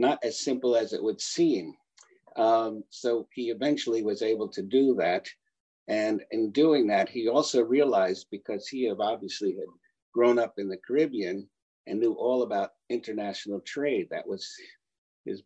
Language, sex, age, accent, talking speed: English, male, 60-79, American, 165 wpm